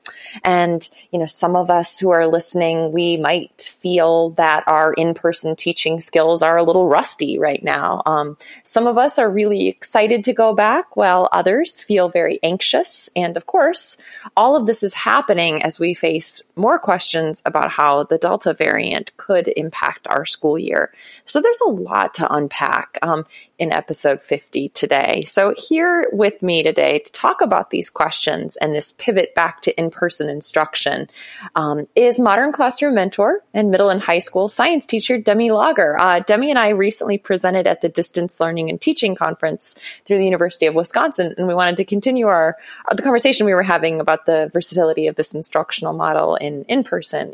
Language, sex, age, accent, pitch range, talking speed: English, female, 20-39, American, 165-215 Hz, 180 wpm